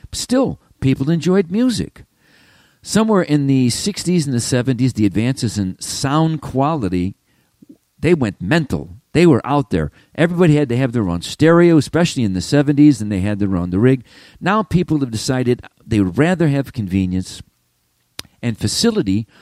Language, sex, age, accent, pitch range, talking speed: English, male, 50-69, American, 115-170 Hz, 160 wpm